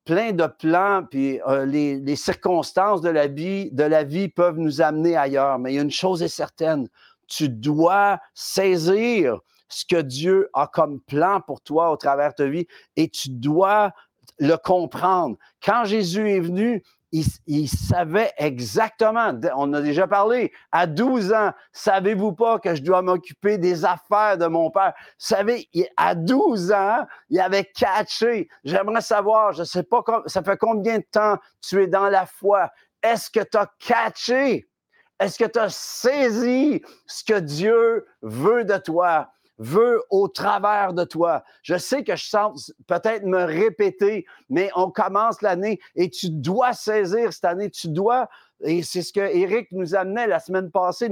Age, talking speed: 50-69, 170 wpm